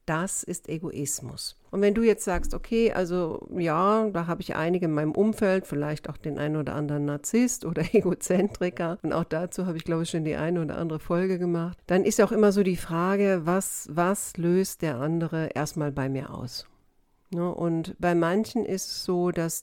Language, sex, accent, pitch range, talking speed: German, female, German, 150-180 Hz, 195 wpm